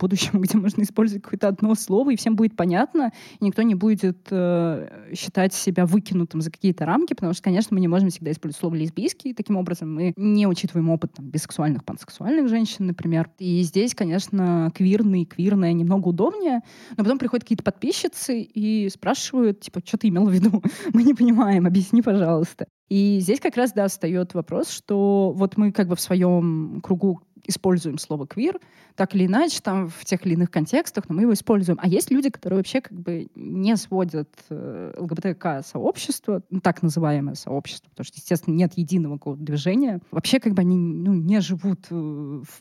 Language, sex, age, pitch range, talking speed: Russian, female, 20-39, 170-210 Hz, 185 wpm